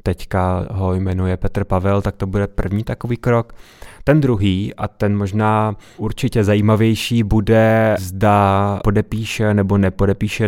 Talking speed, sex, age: 130 wpm, male, 20-39